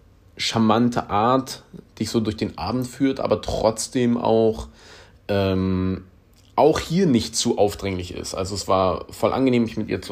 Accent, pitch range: German, 90-115 Hz